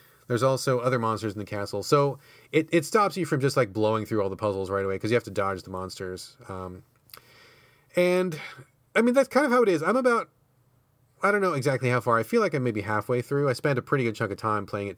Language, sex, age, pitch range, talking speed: English, male, 30-49, 115-155 Hz, 255 wpm